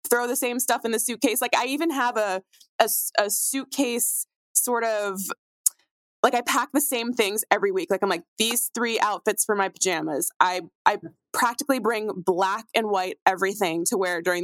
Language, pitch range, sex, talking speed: English, 190-245 Hz, female, 185 wpm